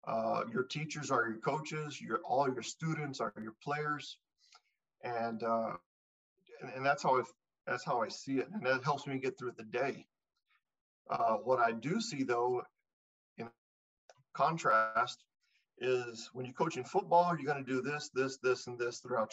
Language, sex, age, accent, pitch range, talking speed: English, male, 40-59, American, 125-140 Hz, 175 wpm